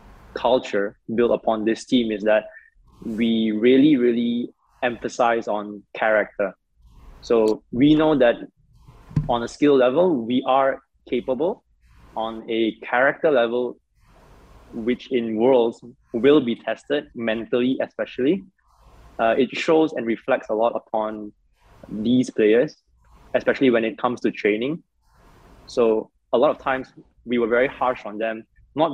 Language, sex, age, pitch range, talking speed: English, male, 20-39, 110-130 Hz, 135 wpm